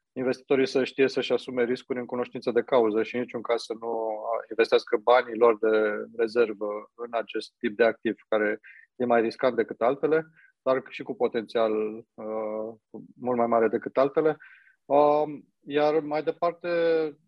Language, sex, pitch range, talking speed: Romanian, male, 115-135 Hz, 160 wpm